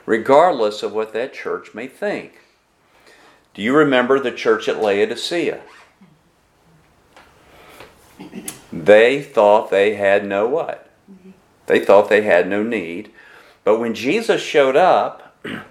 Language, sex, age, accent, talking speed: English, male, 50-69, American, 120 wpm